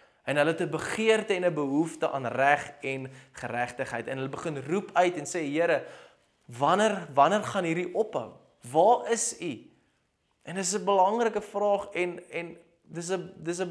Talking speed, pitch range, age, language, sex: 165 wpm, 135-180 Hz, 20-39, English, male